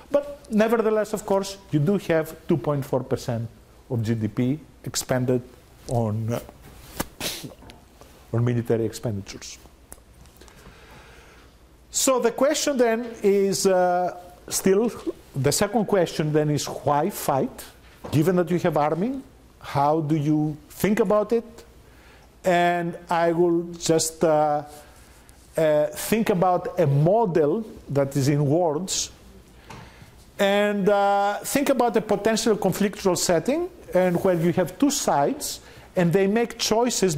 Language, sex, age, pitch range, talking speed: English, male, 50-69, 130-195 Hz, 115 wpm